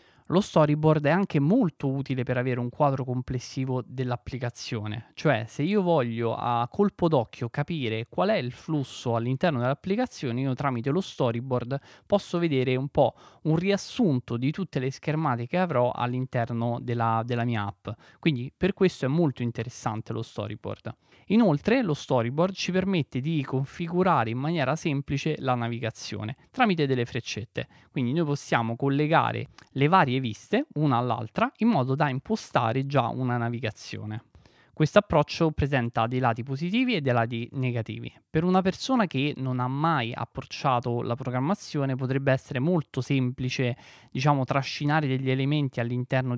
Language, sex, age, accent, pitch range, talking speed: Italian, male, 20-39, native, 120-150 Hz, 145 wpm